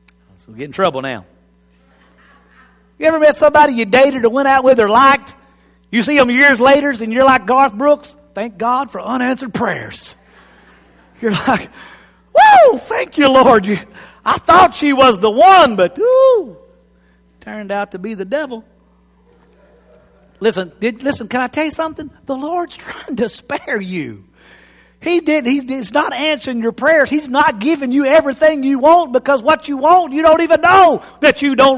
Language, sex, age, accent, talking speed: English, male, 50-69, American, 175 wpm